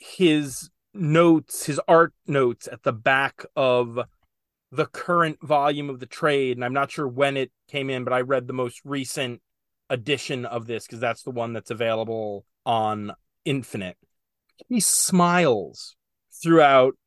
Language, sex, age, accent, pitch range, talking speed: English, male, 30-49, American, 135-180 Hz, 150 wpm